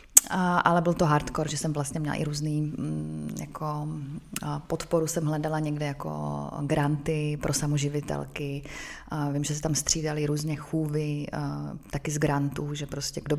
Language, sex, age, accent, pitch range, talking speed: Czech, female, 20-39, native, 150-165 Hz, 145 wpm